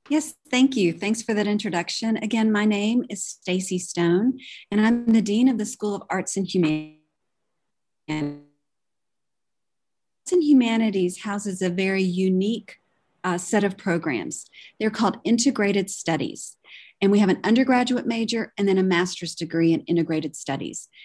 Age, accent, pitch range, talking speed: 40-59, American, 180-220 Hz, 150 wpm